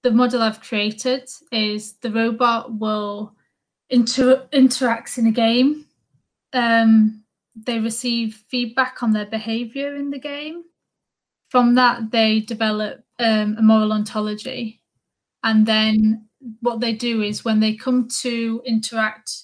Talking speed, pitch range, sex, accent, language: 130 wpm, 220-245 Hz, female, British, English